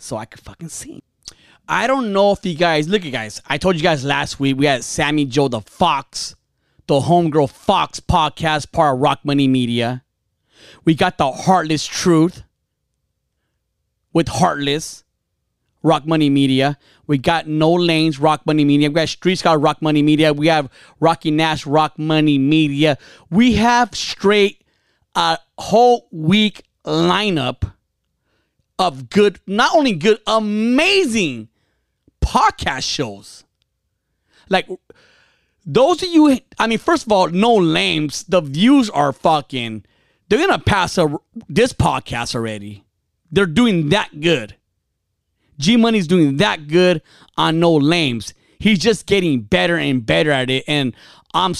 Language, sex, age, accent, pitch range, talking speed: English, male, 30-49, American, 135-185 Hz, 145 wpm